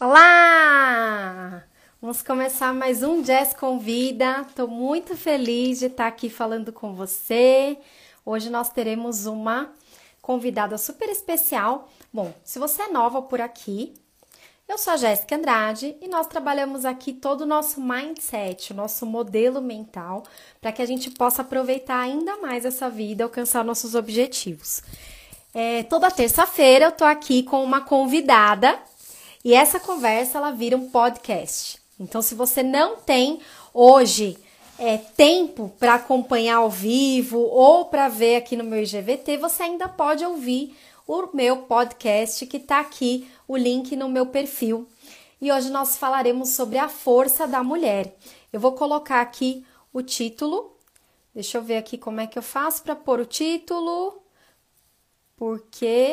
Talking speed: 150 wpm